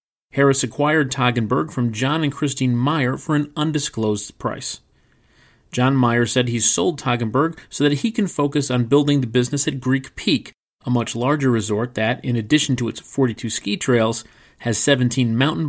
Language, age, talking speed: English, 40-59, 170 wpm